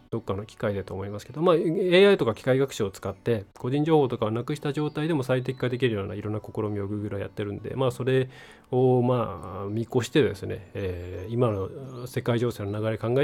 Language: Japanese